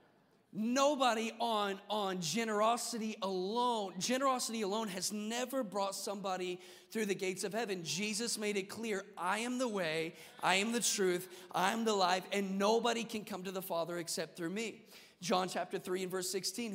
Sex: male